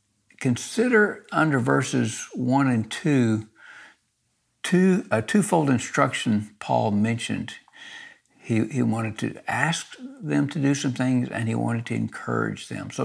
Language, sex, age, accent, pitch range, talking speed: English, male, 60-79, American, 115-155 Hz, 135 wpm